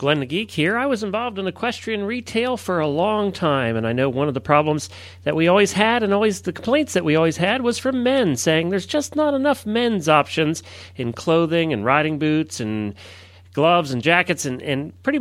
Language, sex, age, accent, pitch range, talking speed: English, male, 40-59, American, 130-210 Hz, 215 wpm